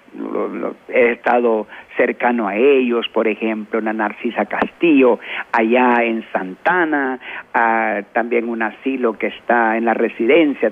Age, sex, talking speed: 50-69, male, 125 wpm